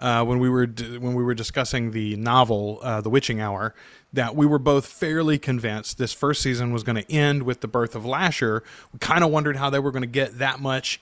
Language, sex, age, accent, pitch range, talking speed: English, male, 30-49, American, 130-160 Hz, 245 wpm